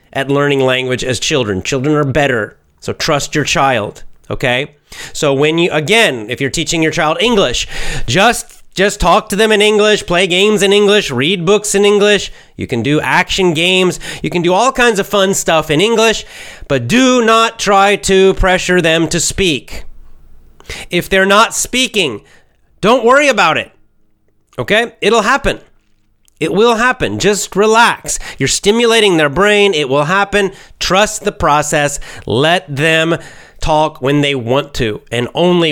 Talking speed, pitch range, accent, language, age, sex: 165 wpm, 140-205 Hz, American, English, 30-49, male